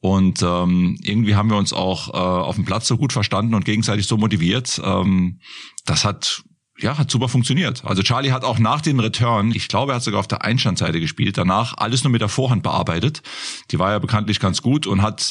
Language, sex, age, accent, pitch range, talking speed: German, male, 30-49, German, 95-115 Hz, 220 wpm